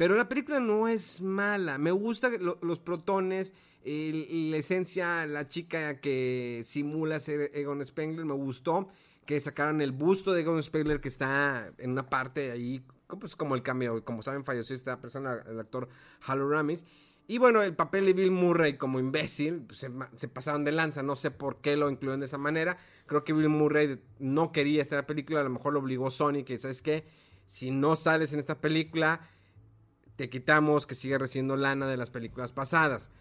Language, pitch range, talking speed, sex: Spanish, 135-185 Hz, 195 wpm, male